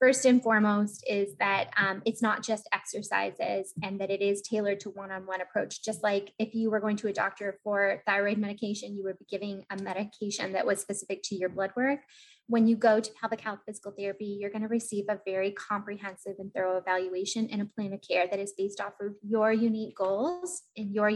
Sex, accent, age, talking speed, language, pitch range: female, American, 10-29, 215 wpm, English, 195-225 Hz